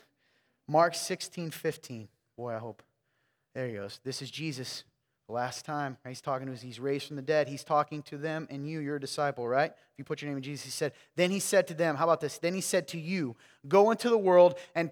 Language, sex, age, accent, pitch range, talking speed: English, male, 30-49, American, 130-180 Hz, 235 wpm